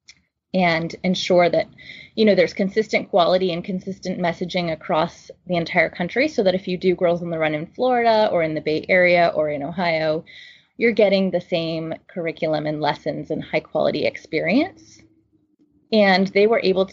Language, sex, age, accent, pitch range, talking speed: English, female, 20-39, American, 165-205 Hz, 175 wpm